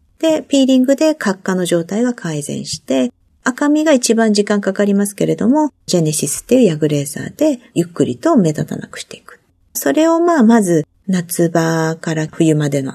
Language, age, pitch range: Japanese, 50-69, 160-265 Hz